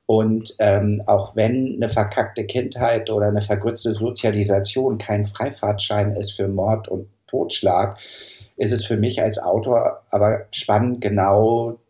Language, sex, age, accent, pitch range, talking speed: German, male, 50-69, German, 100-110 Hz, 135 wpm